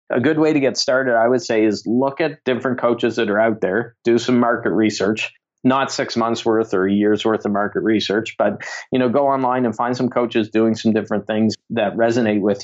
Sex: male